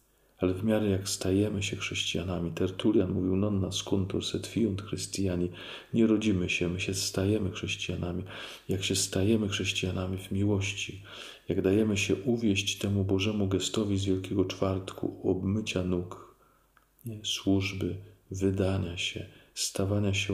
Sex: male